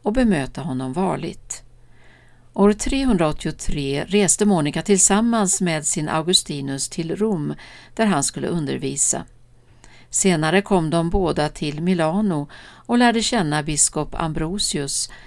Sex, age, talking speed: female, 60-79, 115 wpm